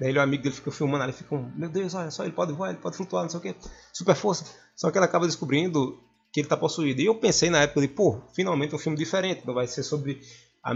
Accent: Brazilian